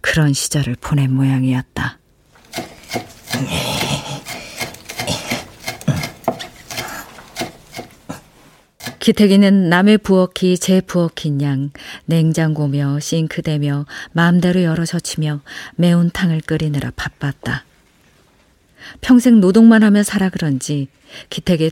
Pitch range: 140-185 Hz